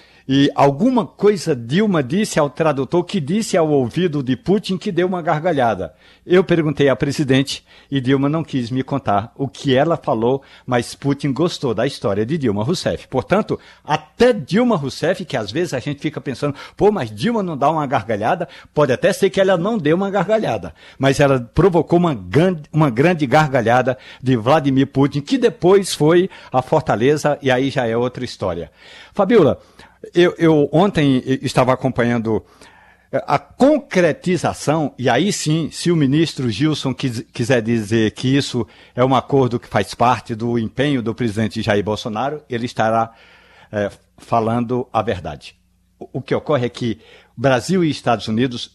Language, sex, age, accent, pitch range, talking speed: Portuguese, male, 60-79, Brazilian, 120-170 Hz, 165 wpm